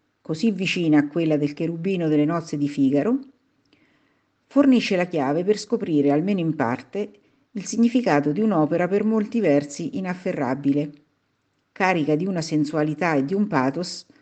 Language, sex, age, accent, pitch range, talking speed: Italian, female, 50-69, native, 150-210 Hz, 145 wpm